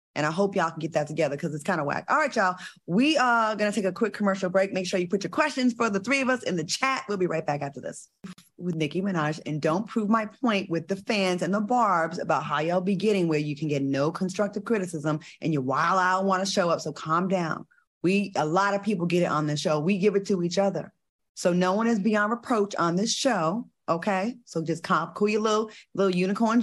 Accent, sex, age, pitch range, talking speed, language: American, female, 30-49, 160-205 Hz, 260 wpm, English